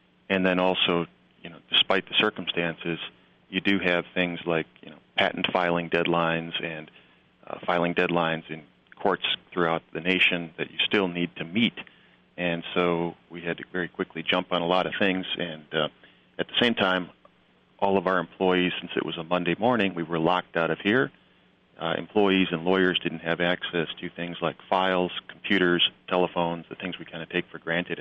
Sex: male